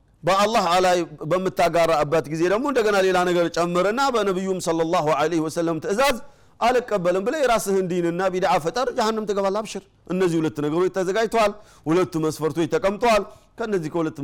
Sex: male